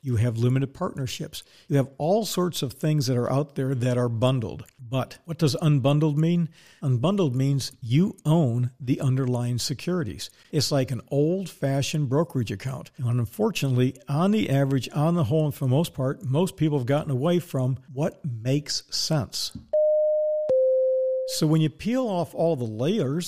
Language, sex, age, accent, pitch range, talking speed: English, male, 50-69, American, 125-160 Hz, 170 wpm